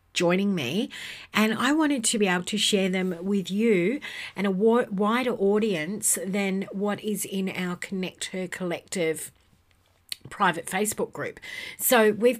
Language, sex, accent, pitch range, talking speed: English, female, Australian, 175-225 Hz, 145 wpm